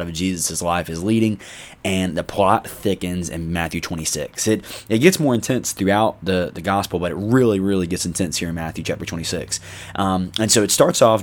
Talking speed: 205 wpm